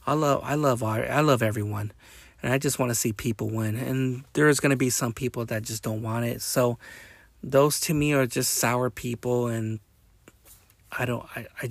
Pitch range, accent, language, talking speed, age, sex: 115-135 Hz, American, English, 200 wpm, 30-49, male